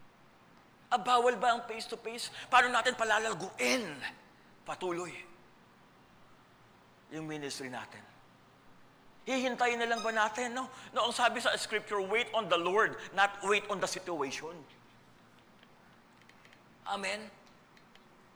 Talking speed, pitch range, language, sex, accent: 110 wpm, 155-235 Hz, English, male, Filipino